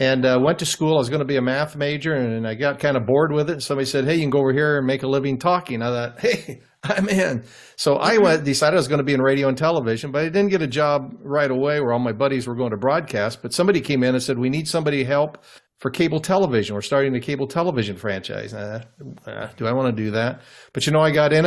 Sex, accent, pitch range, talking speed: male, American, 120-145 Hz, 295 wpm